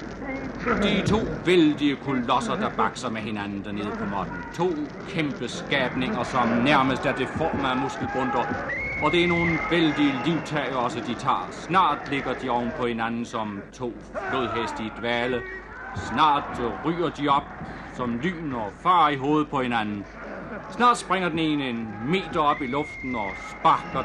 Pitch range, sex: 135-185 Hz, male